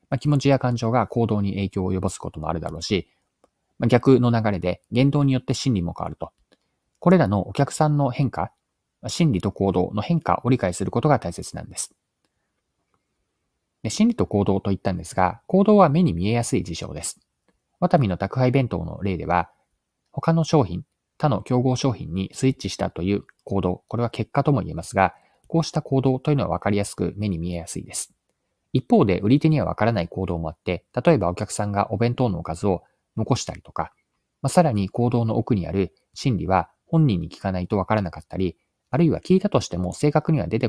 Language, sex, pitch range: Japanese, male, 95-135 Hz